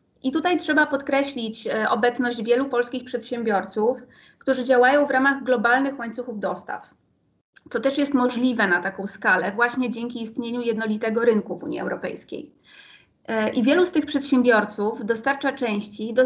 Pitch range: 220-270 Hz